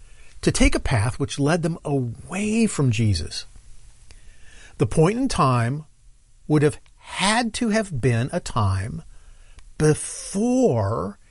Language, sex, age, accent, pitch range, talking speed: English, male, 50-69, American, 115-180 Hz, 120 wpm